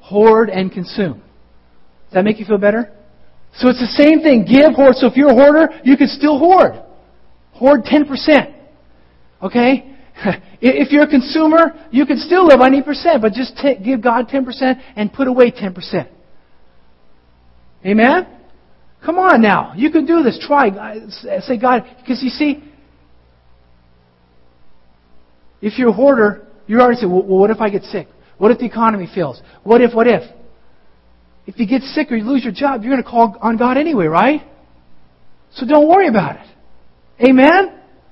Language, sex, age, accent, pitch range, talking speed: English, male, 50-69, American, 160-255 Hz, 170 wpm